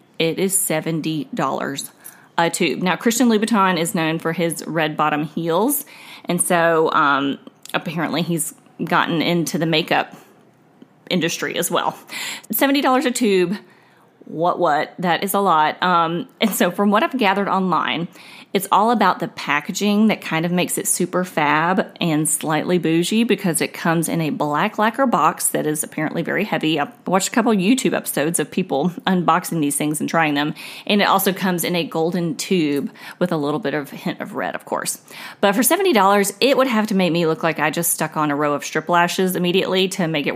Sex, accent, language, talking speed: female, American, English, 190 wpm